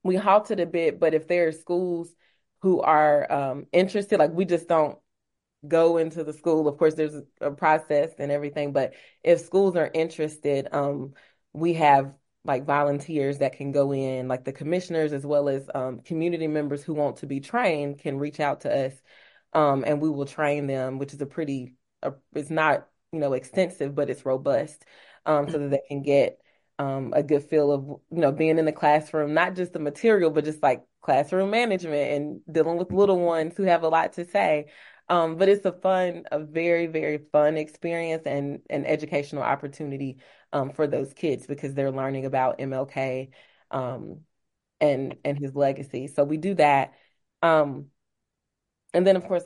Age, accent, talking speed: 20-39, American, 185 wpm